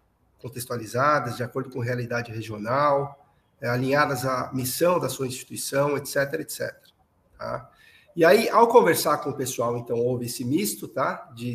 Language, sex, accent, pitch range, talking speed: Portuguese, male, Brazilian, 125-155 Hz, 150 wpm